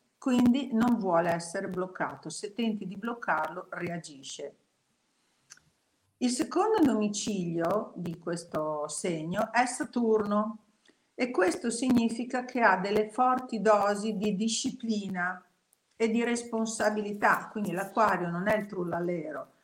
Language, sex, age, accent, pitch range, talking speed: Italian, female, 50-69, native, 180-225 Hz, 115 wpm